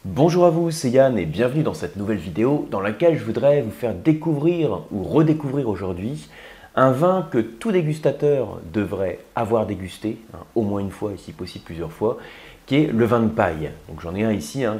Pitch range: 100-145 Hz